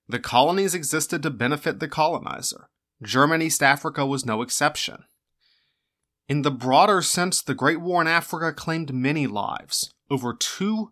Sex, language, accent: male, English, American